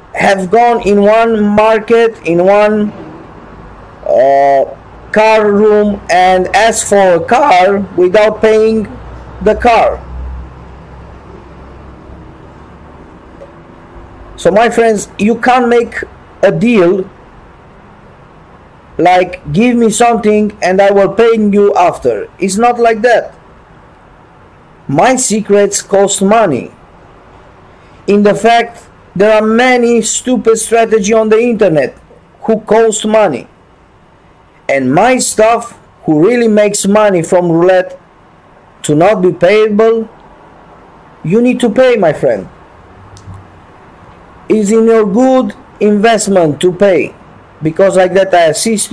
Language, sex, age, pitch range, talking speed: English, male, 50-69, 160-220 Hz, 110 wpm